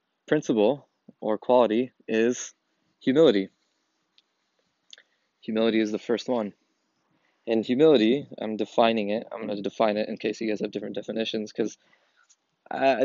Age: 20-39